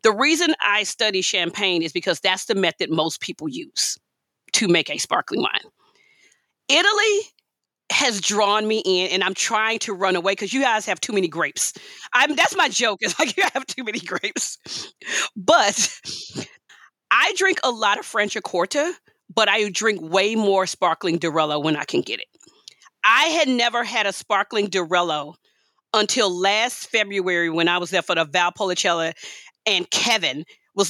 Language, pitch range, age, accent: English, 190-255 Hz, 40-59, American